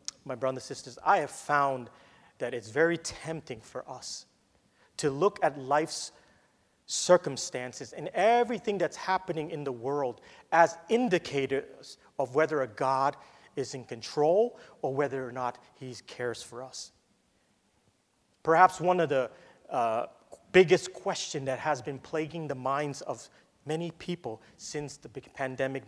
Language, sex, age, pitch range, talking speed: English, male, 30-49, 140-195 Hz, 140 wpm